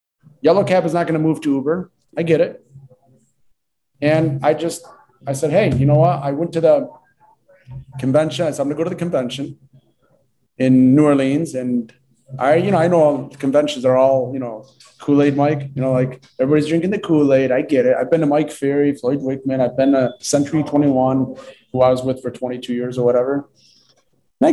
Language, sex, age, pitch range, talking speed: English, male, 30-49, 130-150 Hz, 210 wpm